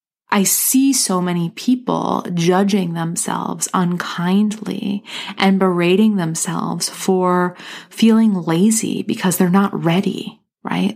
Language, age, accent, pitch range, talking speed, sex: English, 30-49, American, 170-205 Hz, 105 wpm, female